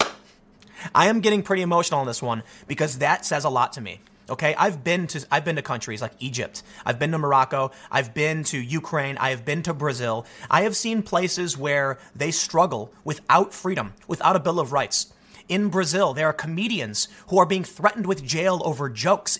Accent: American